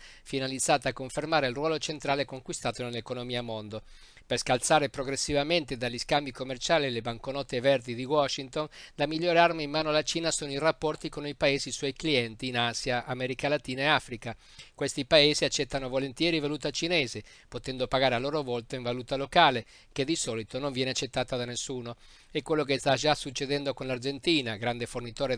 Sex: male